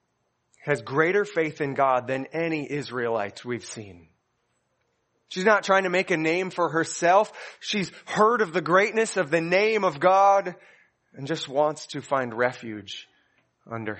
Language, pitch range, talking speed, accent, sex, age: English, 125-175 Hz, 155 wpm, American, male, 30-49